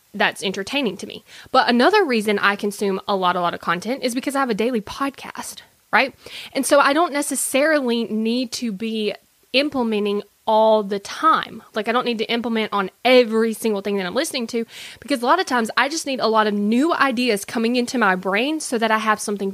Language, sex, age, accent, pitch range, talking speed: English, female, 20-39, American, 205-260 Hz, 220 wpm